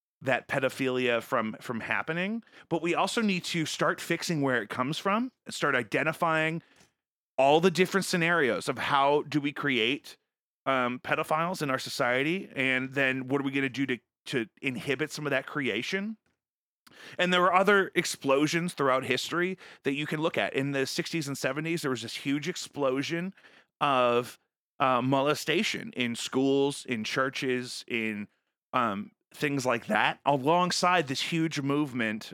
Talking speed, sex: 160 wpm, male